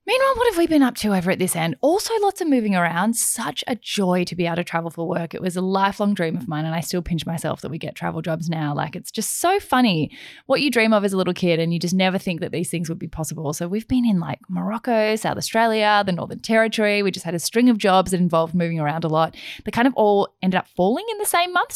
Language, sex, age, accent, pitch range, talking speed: English, female, 10-29, Australian, 170-235 Hz, 285 wpm